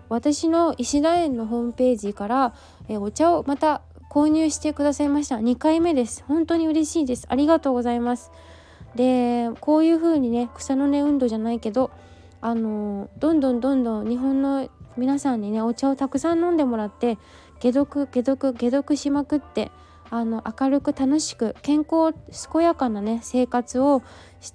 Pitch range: 225-275 Hz